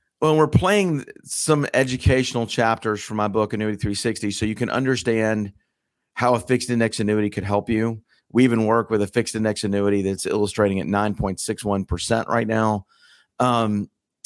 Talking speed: 190 wpm